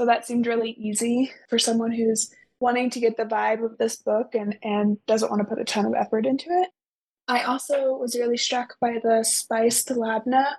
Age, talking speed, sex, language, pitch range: 20-39, 210 wpm, female, English, 225-250 Hz